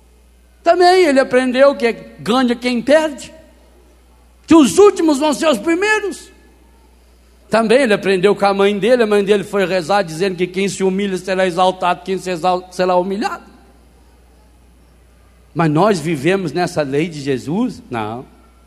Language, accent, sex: Portuguese, Brazilian, male